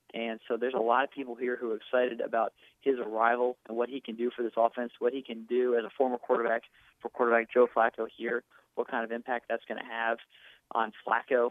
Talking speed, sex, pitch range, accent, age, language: 235 wpm, male, 115-125 Hz, American, 30-49, English